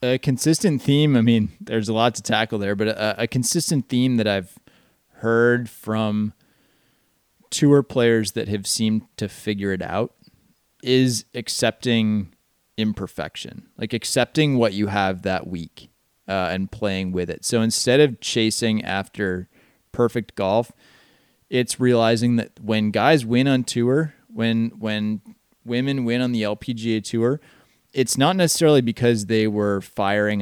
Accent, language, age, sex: American, English, 20-39, male